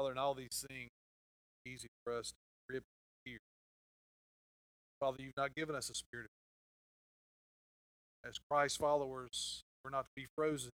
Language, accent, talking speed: English, American, 155 wpm